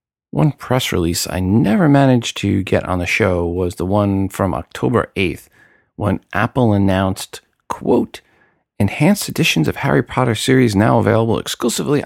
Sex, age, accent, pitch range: male, 40-59, American, 100-145 Hz